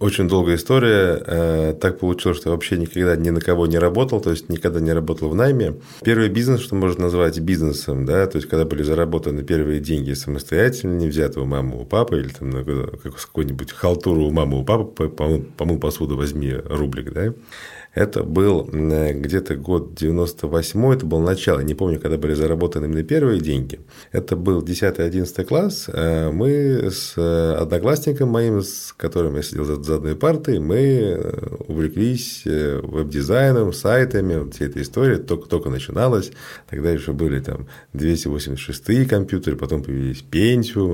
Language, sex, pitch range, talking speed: Russian, male, 75-105 Hz, 160 wpm